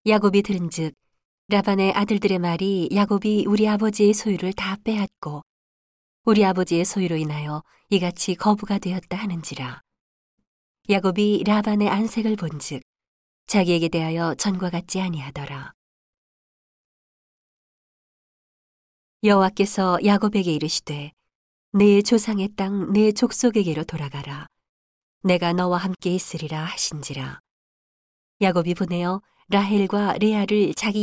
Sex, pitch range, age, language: female, 160-205 Hz, 40-59, Korean